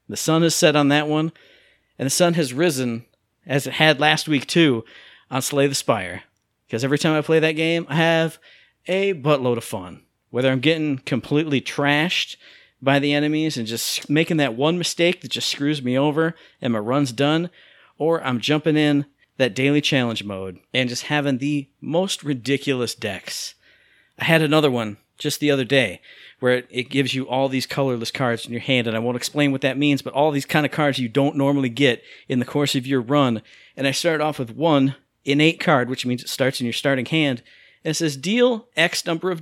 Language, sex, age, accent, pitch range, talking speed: English, male, 40-59, American, 125-155 Hz, 210 wpm